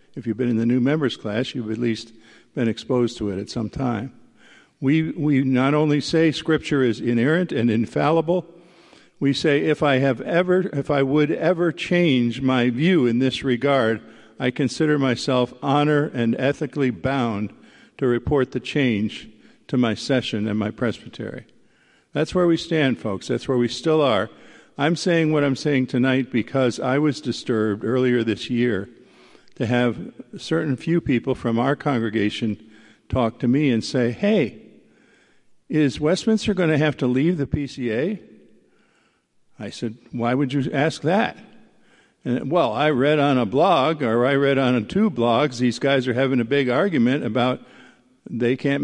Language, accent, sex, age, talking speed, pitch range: English, American, male, 50-69, 170 wpm, 120-150 Hz